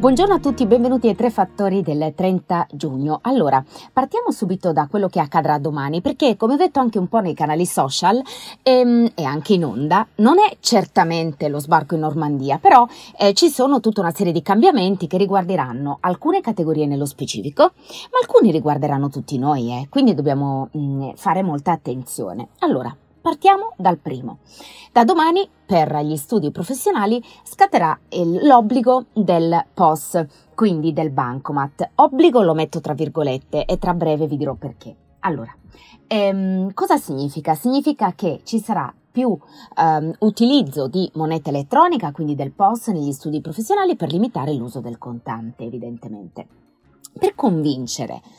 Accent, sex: native, female